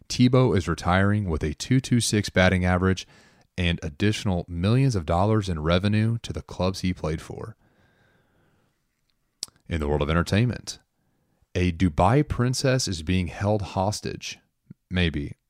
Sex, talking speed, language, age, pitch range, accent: male, 130 wpm, English, 30-49, 80-100 Hz, American